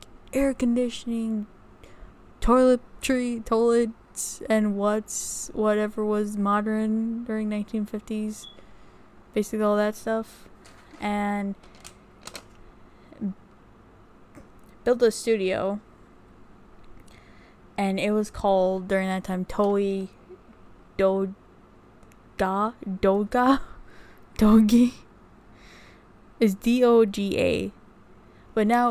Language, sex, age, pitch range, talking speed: English, female, 10-29, 190-220 Hz, 80 wpm